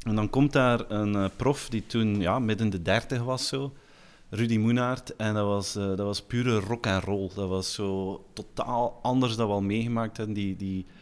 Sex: male